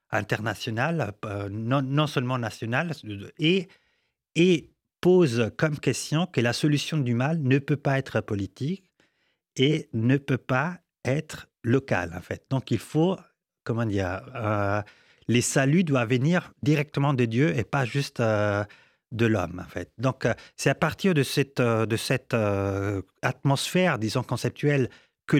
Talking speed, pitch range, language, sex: 150 wpm, 115-155 Hz, French, male